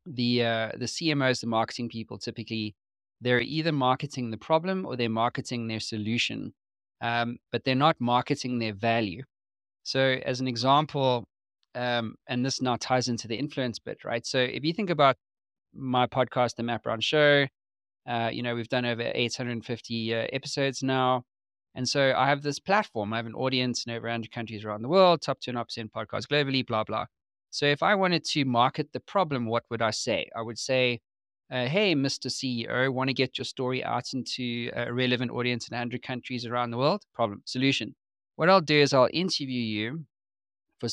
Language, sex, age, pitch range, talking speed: English, male, 20-39, 115-135 Hz, 190 wpm